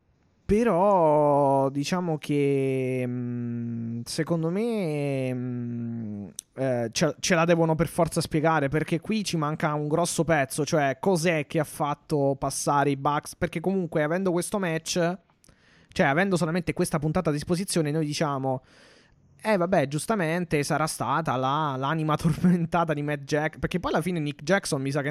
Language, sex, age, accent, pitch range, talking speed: Italian, male, 20-39, native, 135-165 Hz, 145 wpm